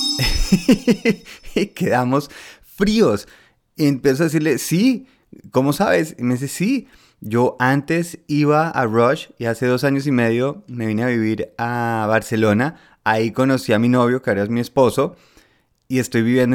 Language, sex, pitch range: Spanish, male, 115-145 Hz